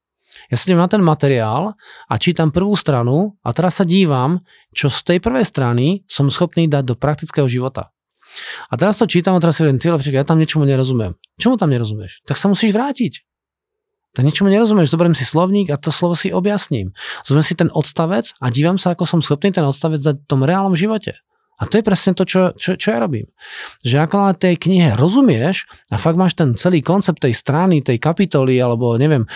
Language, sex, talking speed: Czech, male, 205 wpm